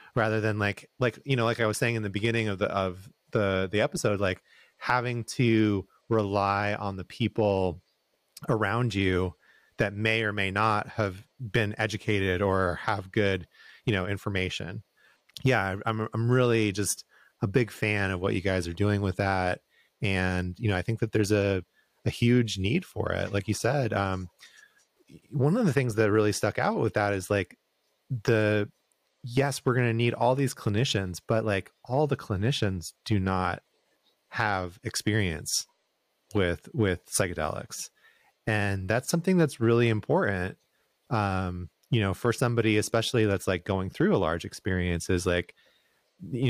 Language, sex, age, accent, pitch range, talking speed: English, male, 30-49, American, 95-115 Hz, 170 wpm